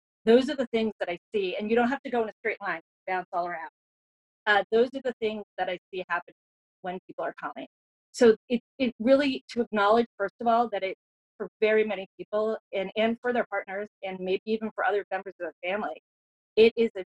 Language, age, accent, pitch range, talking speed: English, 30-49, American, 195-235 Hz, 230 wpm